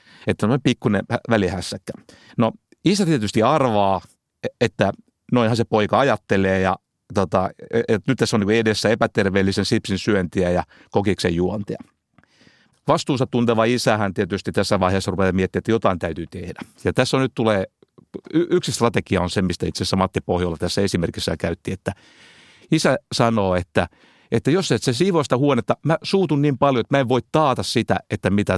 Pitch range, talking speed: 95-130 Hz, 160 wpm